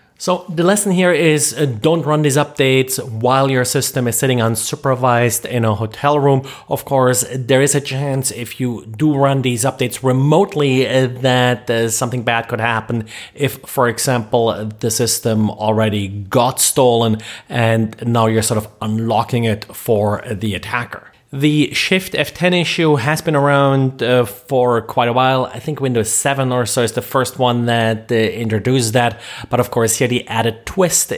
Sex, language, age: male, English, 30-49